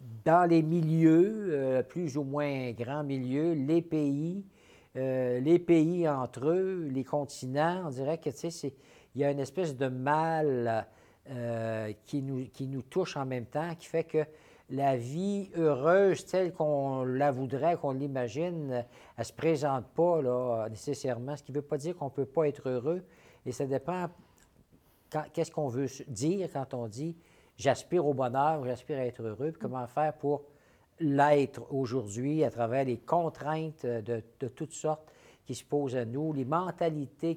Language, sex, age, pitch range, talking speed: French, male, 60-79, 125-160 Hz, 170 wpm